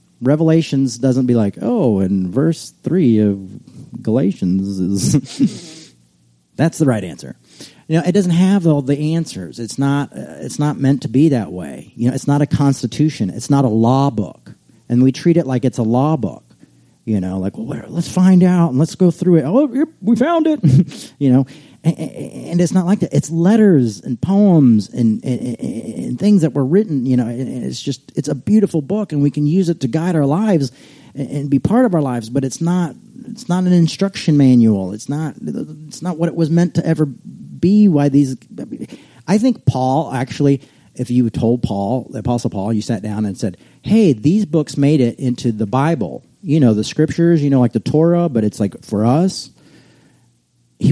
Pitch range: 120-170 Hz